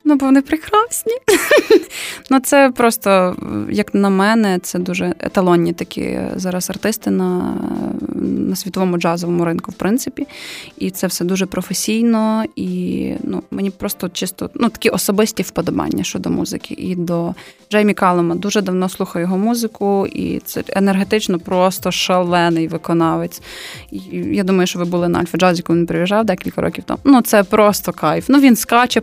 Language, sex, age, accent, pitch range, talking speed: Ukrainian, female, 20-39, native, 185-260 Hz, 155 wpm